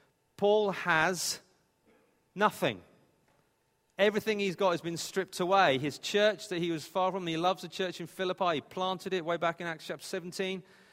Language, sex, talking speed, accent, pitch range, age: English, male, 165 wpm, British, 145-185 Hz, 40-59